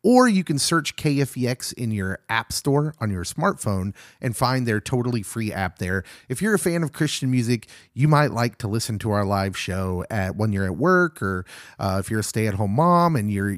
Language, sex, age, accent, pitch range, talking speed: English, male, 30-49, American, 95-140 Hz, 215 wpm